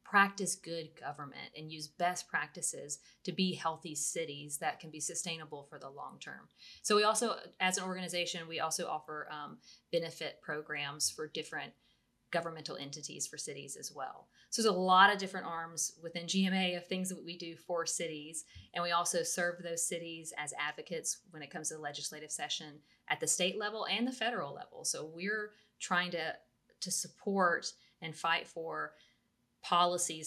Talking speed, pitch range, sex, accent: 175 wpm, 160-185 Hz, female, American